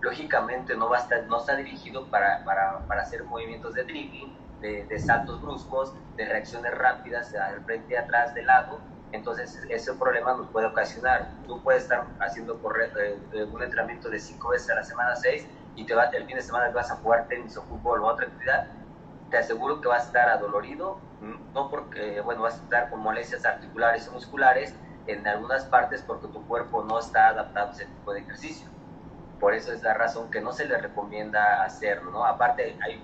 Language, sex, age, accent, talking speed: Spanish, male, 30-49, Mexican, 200 wpm